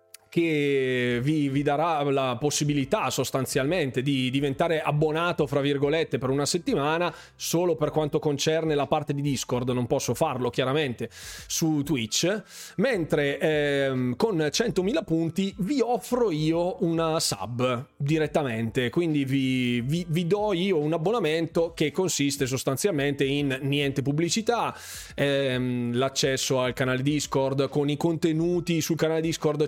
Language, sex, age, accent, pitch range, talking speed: Italian, male, 20-39, native, 135-170 Hz, 130 wpm